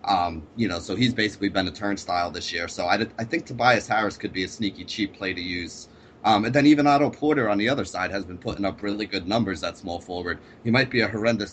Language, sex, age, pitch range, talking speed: English, male, 30-49, 95-115 Hz, 255 wpm